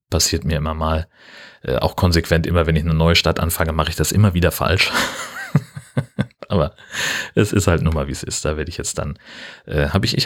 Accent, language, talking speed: German, German, 220 wpm